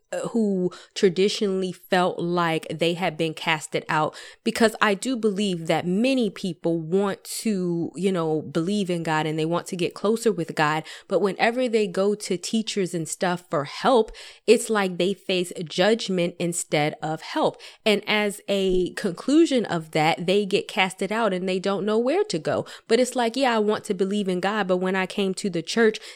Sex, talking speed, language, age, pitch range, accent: female, 190 wpm, English, 20-39, 180-215 Hz, American